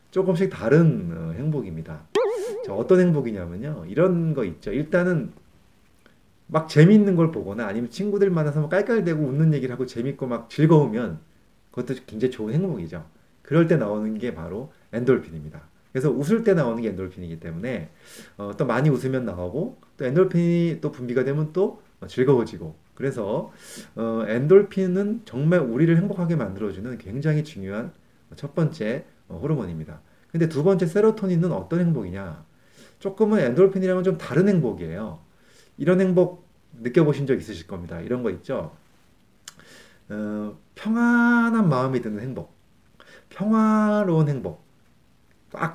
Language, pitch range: Korean, 120-185 Hz